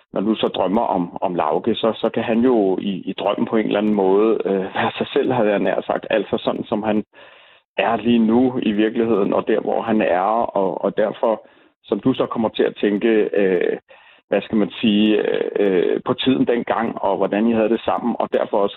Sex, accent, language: male, native, Danish